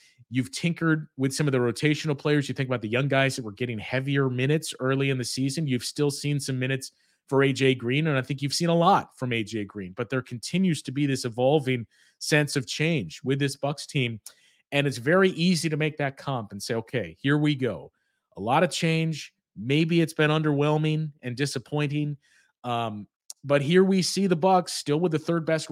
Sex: male